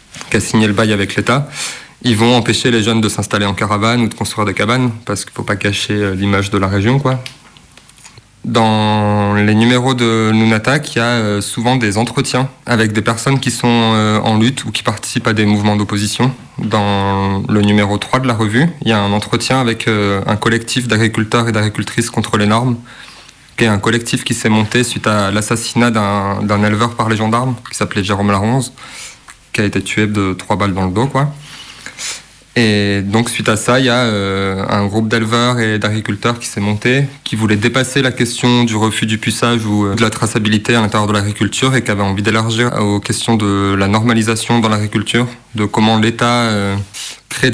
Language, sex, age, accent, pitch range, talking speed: French, male, 20-39, French, 105-120 Hz, 205 wpm